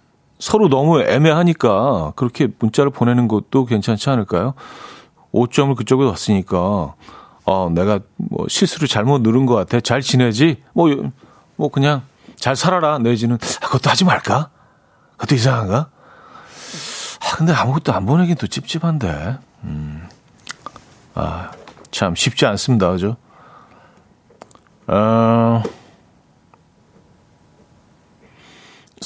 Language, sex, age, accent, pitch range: Korean, male, 40-59, native, 115-145 Hz